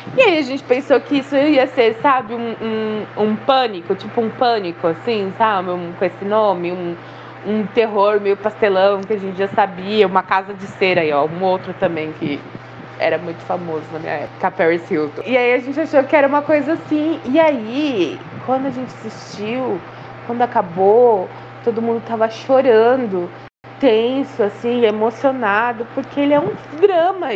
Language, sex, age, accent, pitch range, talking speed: Portuguese, female, 20-39, Brazilian, 195-270 Hz, 175 wpm